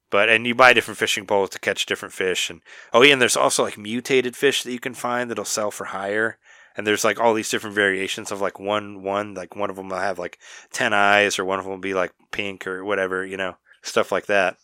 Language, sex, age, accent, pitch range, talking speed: English, male, 20-39, American, 95-120 Hz, 260 wpm